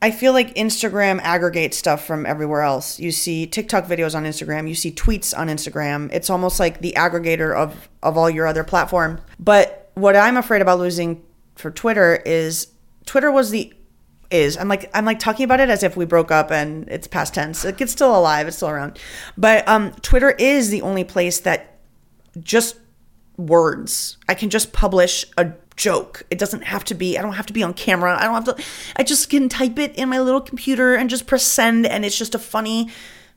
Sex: female